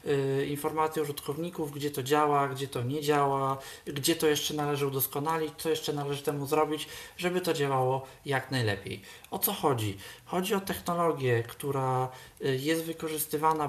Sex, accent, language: male, native, Polish